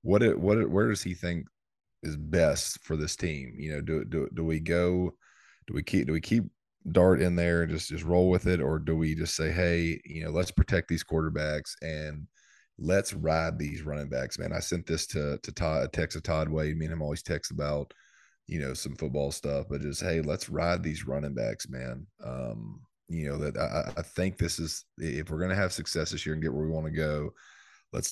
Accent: American